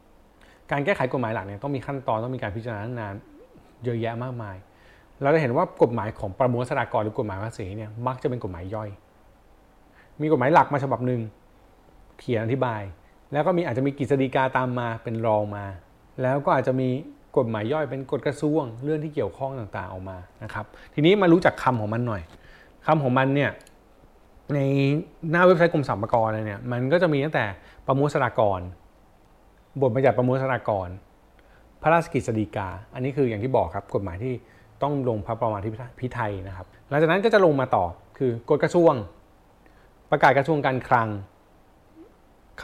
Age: 20-39